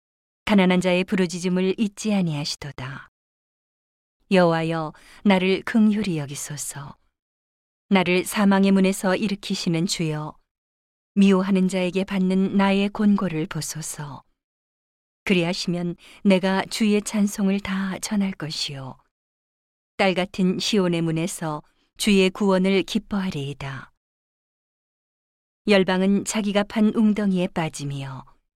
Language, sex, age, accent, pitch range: Korean, female, 40-59, native, 150-200 Hz